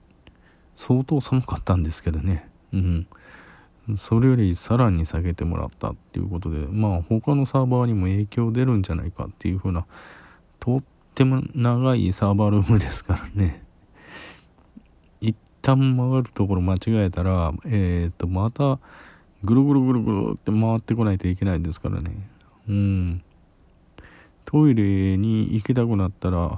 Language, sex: Japanese, male